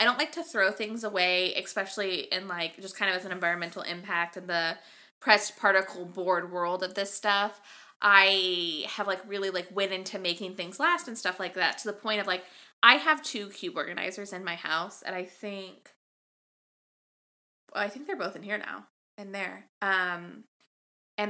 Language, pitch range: English, 185-220 Hz